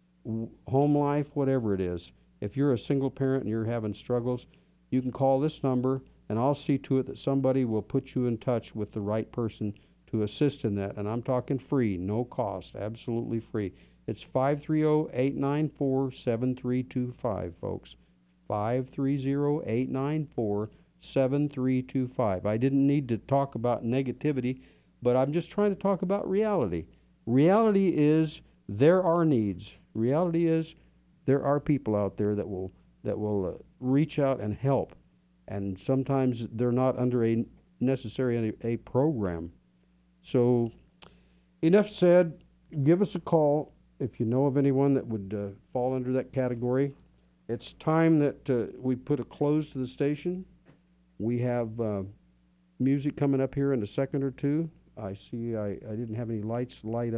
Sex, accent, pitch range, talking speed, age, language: male, American, 110-140 Hz, 155 wpm, 50-69, English